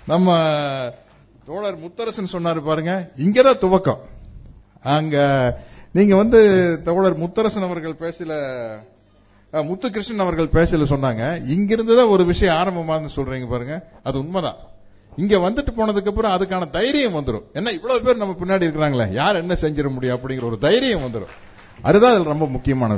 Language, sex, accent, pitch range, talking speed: Tamil, male, native, 130-175 Hz, 75 wpm